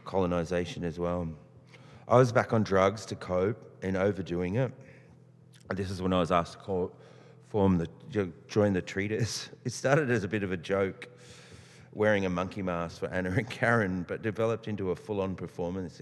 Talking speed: 185 wpm